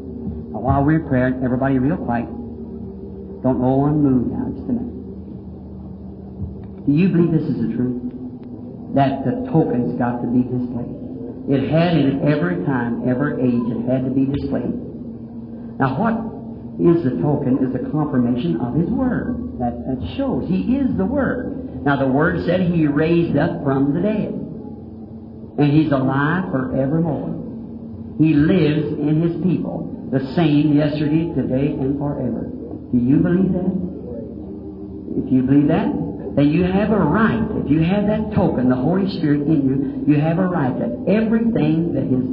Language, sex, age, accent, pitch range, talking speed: English, male, 50-69, American, 120-155 Hz, 160 wpm